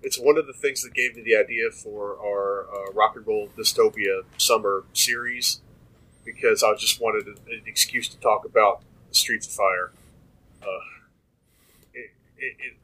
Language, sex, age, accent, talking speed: English, male, 30-49, American, 160 wpm